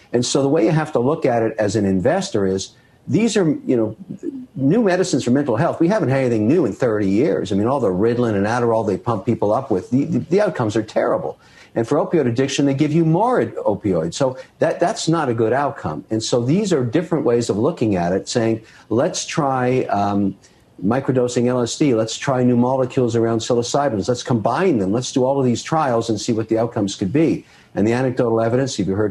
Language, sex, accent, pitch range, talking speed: English, male, American, 110-140 Hz, 225 wpm